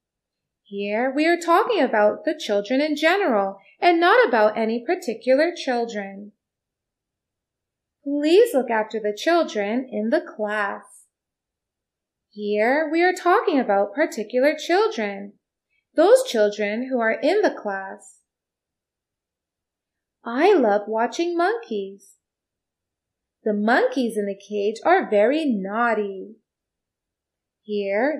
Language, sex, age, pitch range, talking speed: English, female, 30-49, 205-320 Hz, 105 wpm